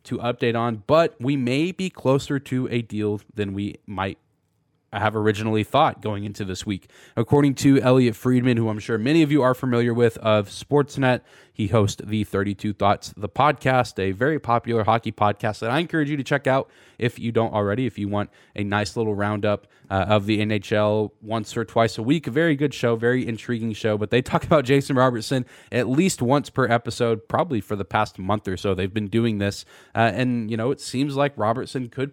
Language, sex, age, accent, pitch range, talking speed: English, male, 20-39, American, 105-130 Hz, 210 wpm